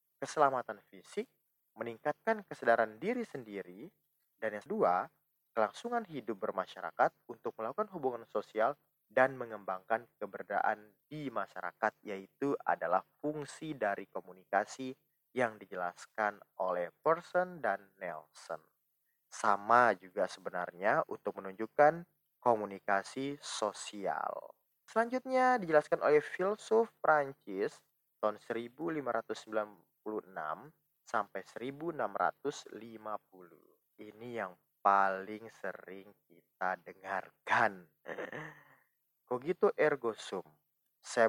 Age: 20-39